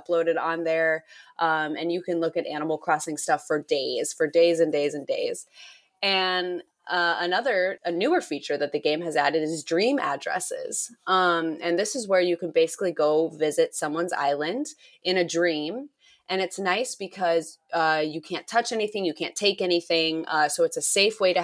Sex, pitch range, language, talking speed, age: female, 165-200 Hz, English, 195 wpm, 20-39